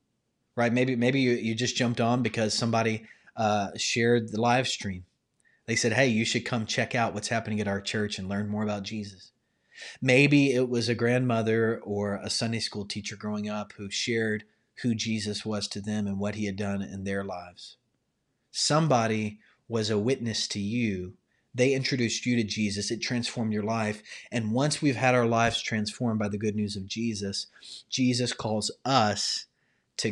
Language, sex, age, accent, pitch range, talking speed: English, male, 30-49, American, 105-125 Hz, 185 wpm